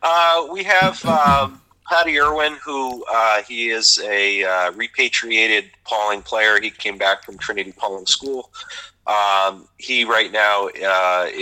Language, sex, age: English, male, 40-59